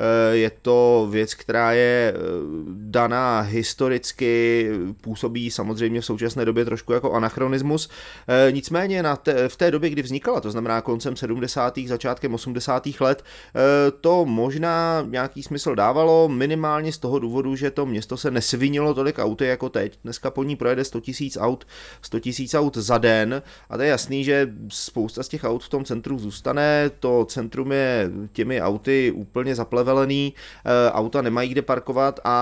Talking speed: 155 wpm